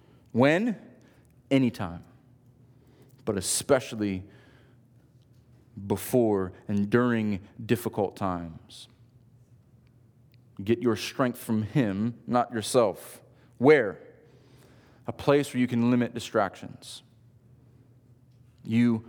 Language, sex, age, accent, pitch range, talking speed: English, male, 30-49, American, 120-135 Hz, 80 wpm